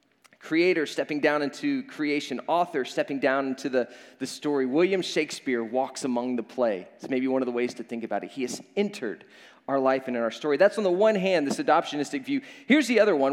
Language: English